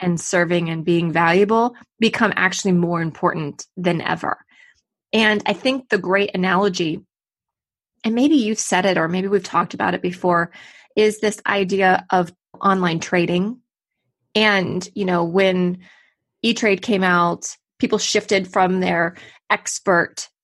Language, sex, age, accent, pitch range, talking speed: English, female, 20-39, American, 175-210 Hz, 140 wpm